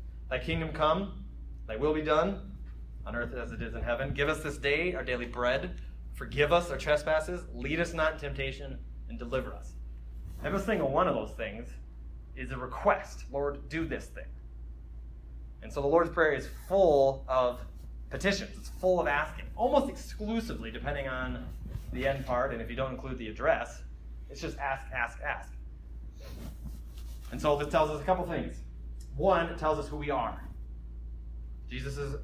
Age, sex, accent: 30-49, male, American